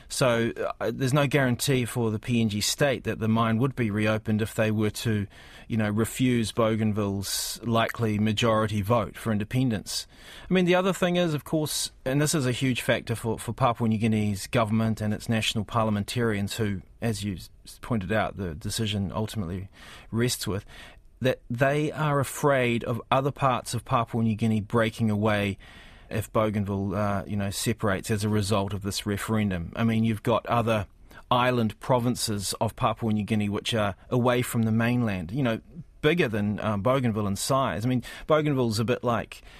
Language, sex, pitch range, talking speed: English, male, 105-125 Hz, 180 wpm